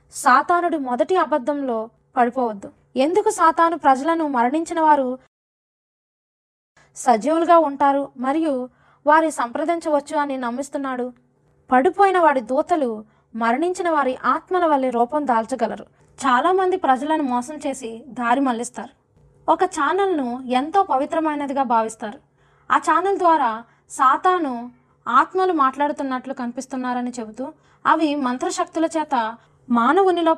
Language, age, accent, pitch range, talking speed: Telugu, 20-39, native, 245-315 Hz, 95 wpm